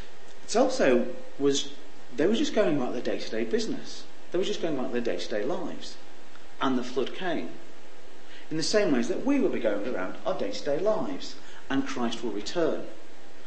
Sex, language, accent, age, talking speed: male, English, British, 40-59, 180 wpm